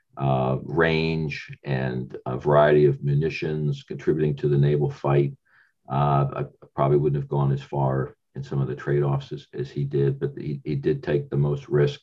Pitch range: 70-90 Hz